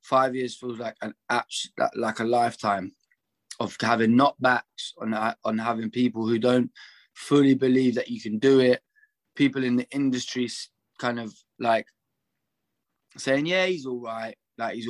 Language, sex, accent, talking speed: English, male, British, 155 wpm